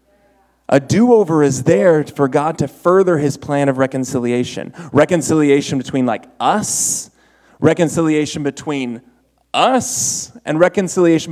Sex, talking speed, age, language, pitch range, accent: male, 110 wpm, 30-49, English, 140-175 Hz, American